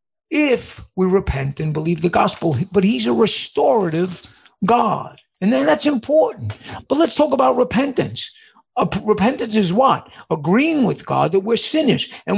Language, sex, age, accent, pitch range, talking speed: English, male, 50-69, American, 160-230 Hz, 150 wpm